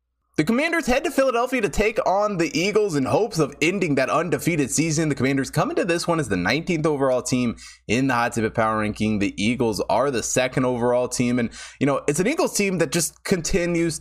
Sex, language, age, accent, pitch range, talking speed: male, English, 20-39, American, 120-150 Hz, 225 wpm